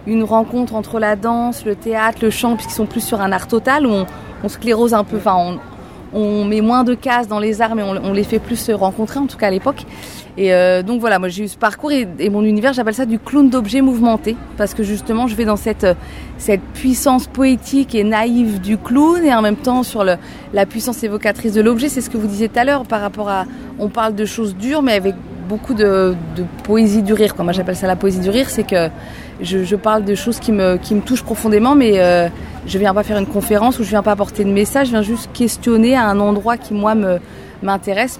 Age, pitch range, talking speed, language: 30-49, 195-235 Hz, 255 wpm, French